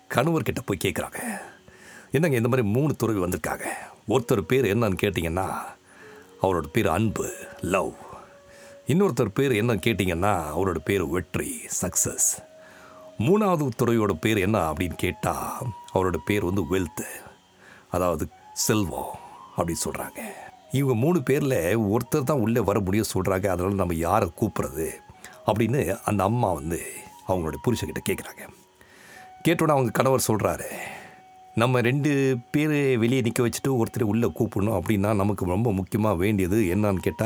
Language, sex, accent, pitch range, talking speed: Tamil, male, native, 95-130 Hz, 125 wpm